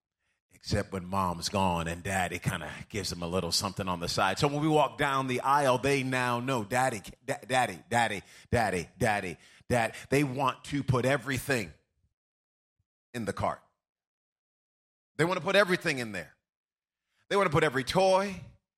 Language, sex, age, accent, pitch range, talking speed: English, male, 30-49, American, 115-160 Hz, 170 wpm